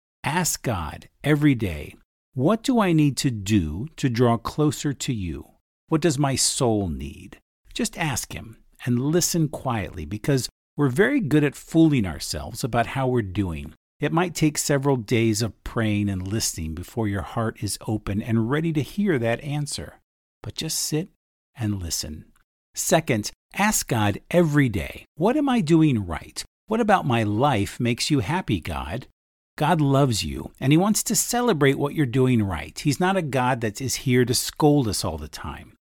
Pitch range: 100-150 Hz